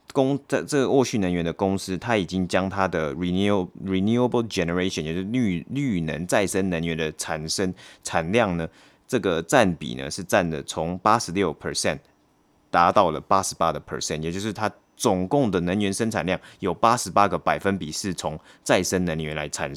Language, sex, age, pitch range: Chinese, male, 30-49, 85-110 Hz